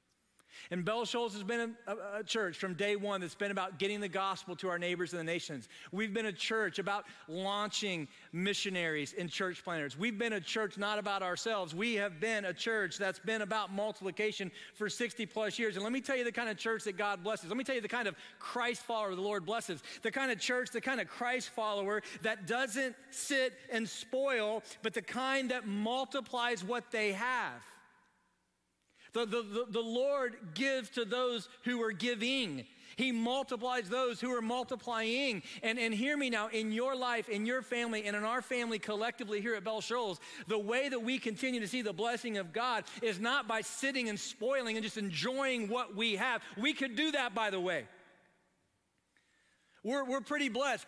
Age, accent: 40-59, American